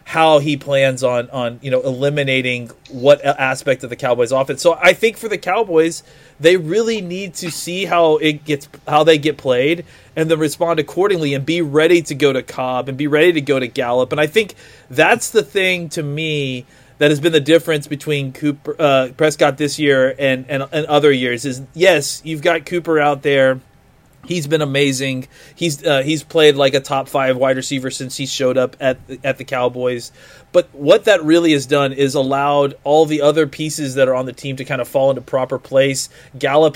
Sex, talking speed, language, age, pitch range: male, 205 wpm, English, 30-49, 130-155 Hz